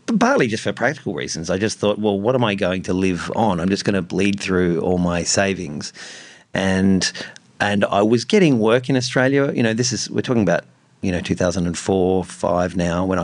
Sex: male